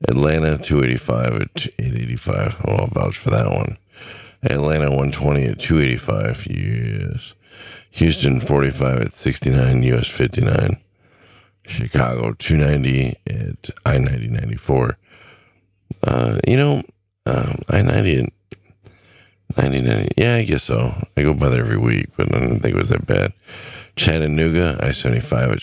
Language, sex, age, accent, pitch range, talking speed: English, male, 50-69, American, 65-110 Hz, 135 wpm